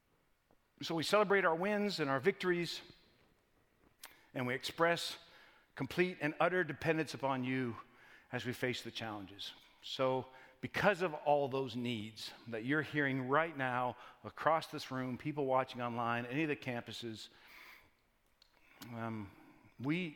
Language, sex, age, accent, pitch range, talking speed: English, male, 50-69, American, 130-185 Hz, 135 wpm